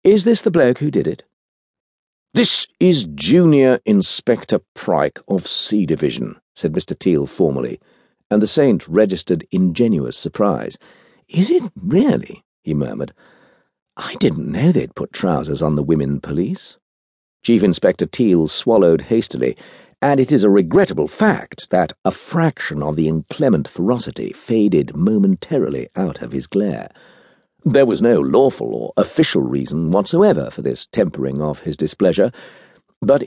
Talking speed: 140 wpm